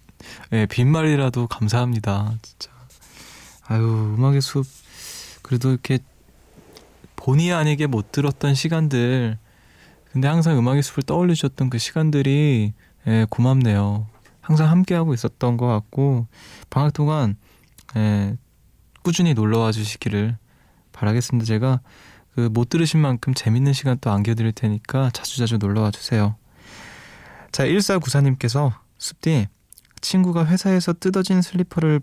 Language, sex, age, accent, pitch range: Korean, male, 20-39, native, 110-145 Hz